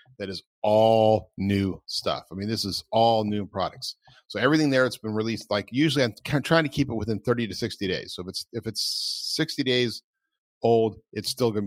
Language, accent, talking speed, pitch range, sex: English, American, 220 wpm, 100-125 Hz, male